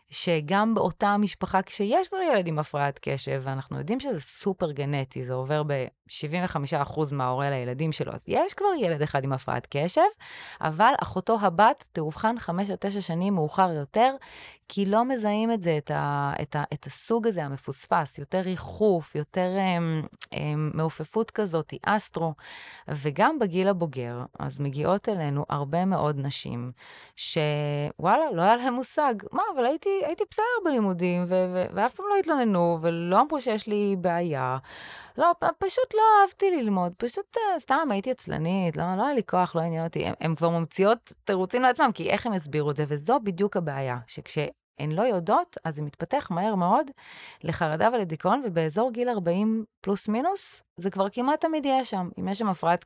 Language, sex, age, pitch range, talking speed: Hebrew, female, 20-39, 155-230 Hz, 165 wpm